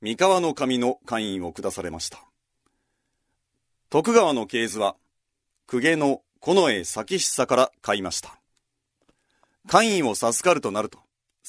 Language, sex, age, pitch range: Japanese, male, 40-59, 105-165 Hz